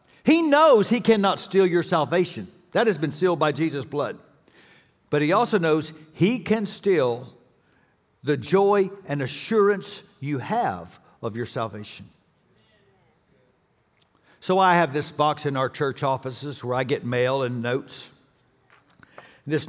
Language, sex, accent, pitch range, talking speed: English, male, American, 135-170 Hz, 140 wpm